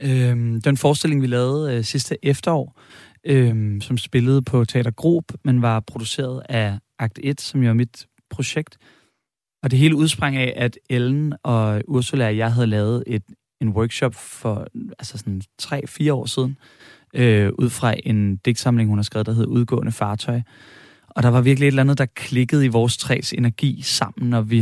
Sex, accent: male, native